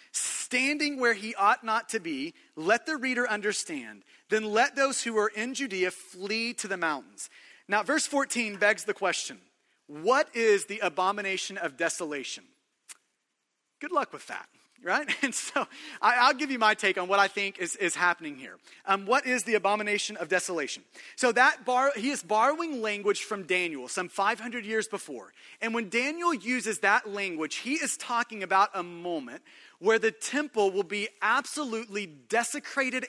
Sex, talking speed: male, 170 wpm